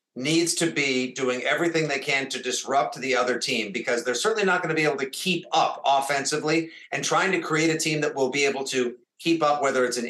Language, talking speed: English, 240 wpm